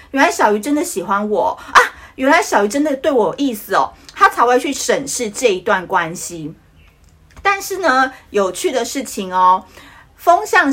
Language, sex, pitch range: Chinese, female, 200-295 Hz